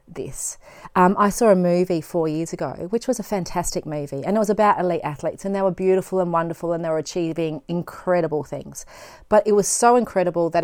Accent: Australian